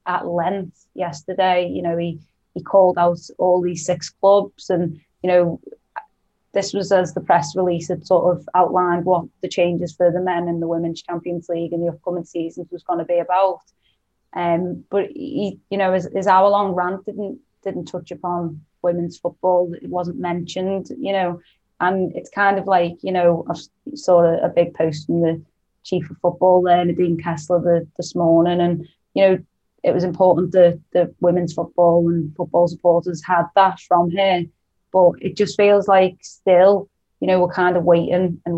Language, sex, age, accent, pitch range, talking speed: English, female, 20-39, British, 170-190 Hz, 190 wpm